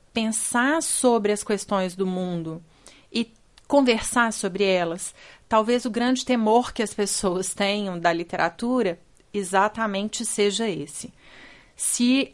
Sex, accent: female, Brazilian